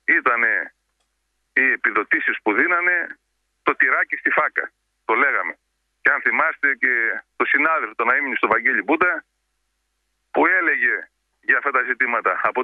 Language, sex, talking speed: Greek, male, 135 wpm